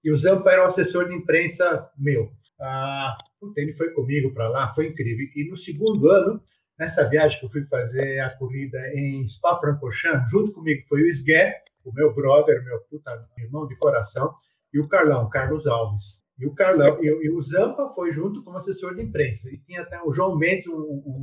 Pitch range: 135-185 Hz